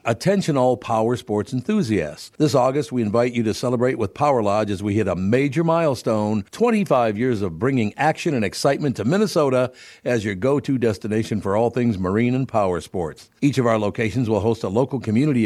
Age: 60-79